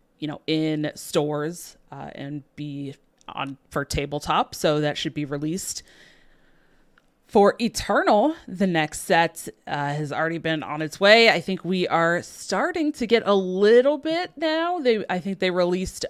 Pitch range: 160-225 Hz